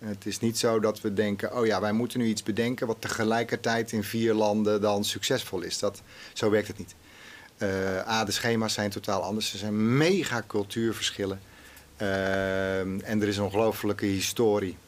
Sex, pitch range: male, 105-125 Hz